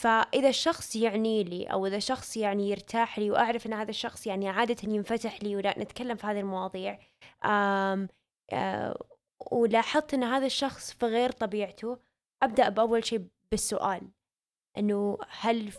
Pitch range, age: 200-235 Hz, 10-29